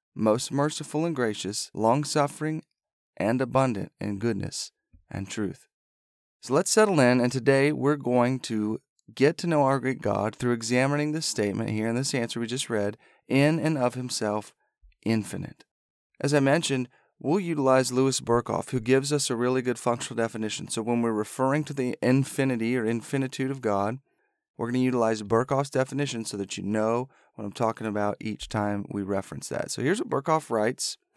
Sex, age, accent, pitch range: male, 30-49, American, 110-140 Hz